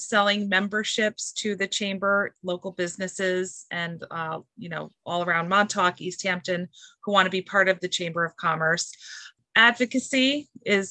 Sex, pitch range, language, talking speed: female, 180-205 Hz, English, 155 wpm